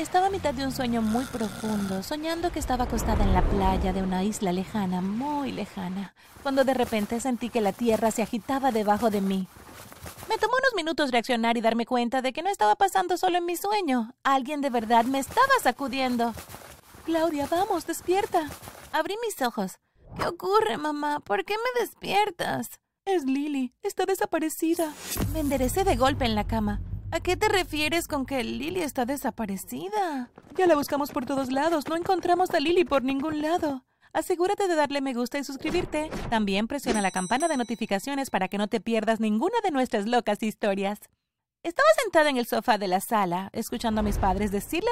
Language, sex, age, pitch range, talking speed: Spanish, female, 30-49, 225-325 Hz, 185 wpm